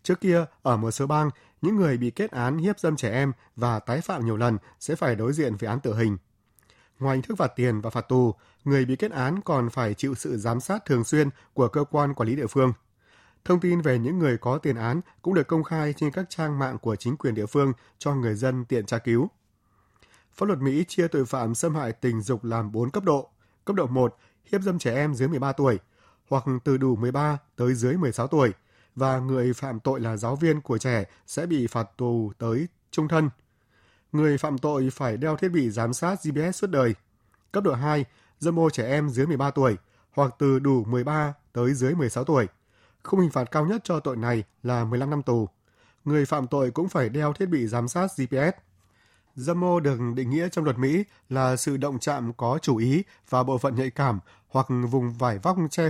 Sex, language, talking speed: male, Vietnamese, 220 wpm